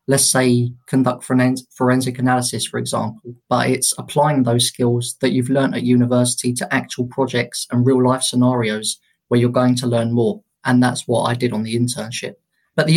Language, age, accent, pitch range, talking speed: English, 20-39, British, 120-135 Hz, 185 wpm